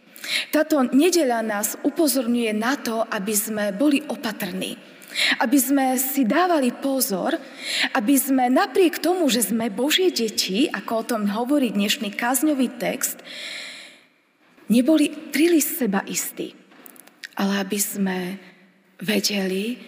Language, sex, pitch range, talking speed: Slovak, female, 210-285 Hz, 120 wpm